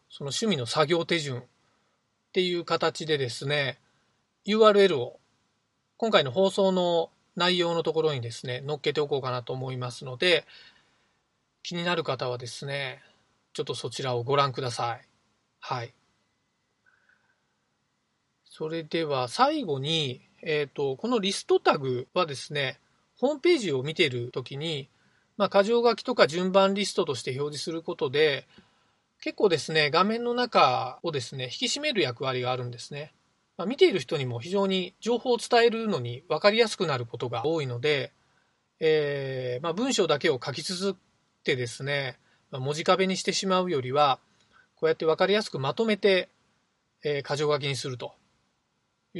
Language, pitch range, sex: Japanese, 135-195 Hz, male